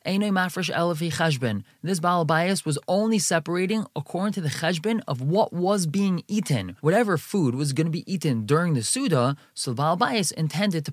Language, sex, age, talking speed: English, male, 20-39, 170 wpm